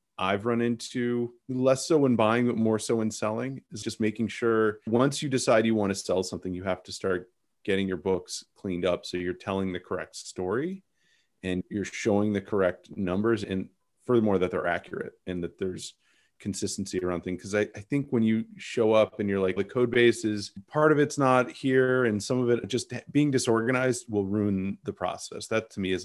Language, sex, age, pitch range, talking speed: English, male, 30-49, 95-120 Hz, 210 wpm